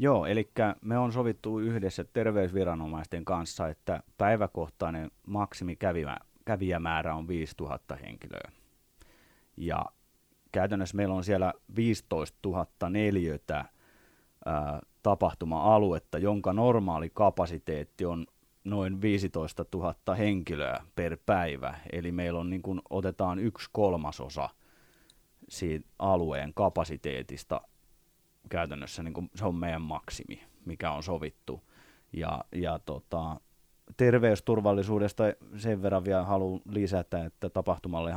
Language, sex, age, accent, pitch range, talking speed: Finnish, male, 30-49, native, 85-100 Hz, 100 wpm